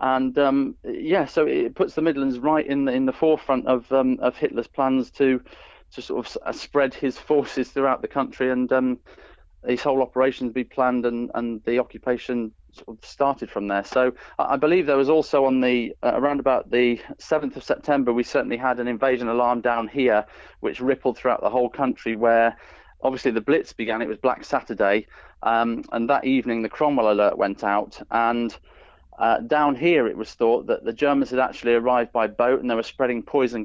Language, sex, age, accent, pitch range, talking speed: English, male, 30-49, British, 120-135 Hz, 200 wpm